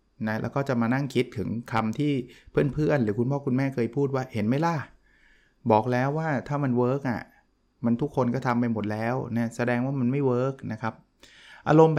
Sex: male